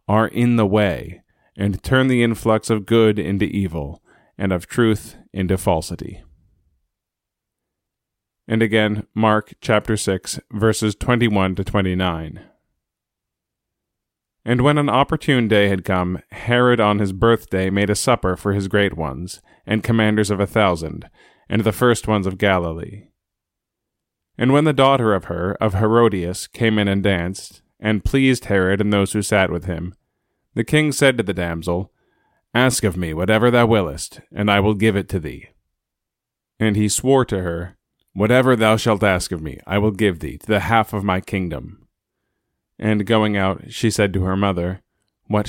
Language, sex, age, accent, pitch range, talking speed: English, male, 30-49, American, 95-110 Hz, 165 wpm